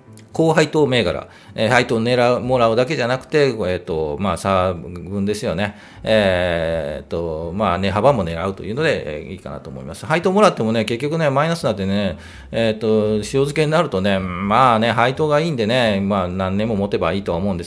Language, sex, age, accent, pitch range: Japanese, male, 40-59, native, 95-145 Hz